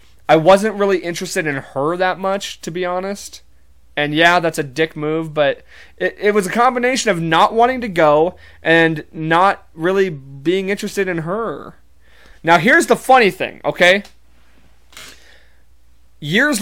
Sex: male